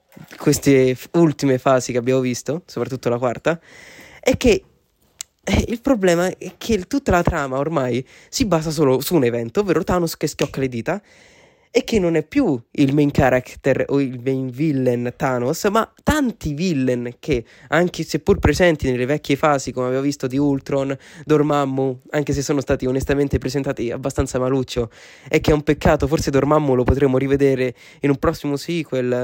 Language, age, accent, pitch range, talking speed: Italian, 20-39, native, 135-185 Hz, 170 wpm